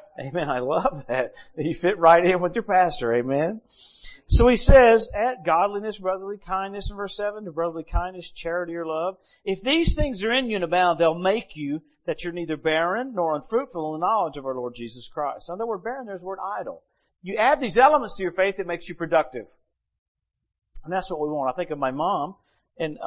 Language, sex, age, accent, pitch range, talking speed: English, male, 50-69, American, 170-235 Hz, 215 wpm